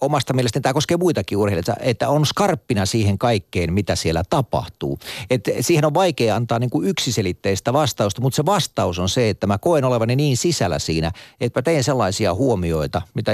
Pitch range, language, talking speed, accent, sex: 90-125 Hz, Finnish, 185 wpm, native, male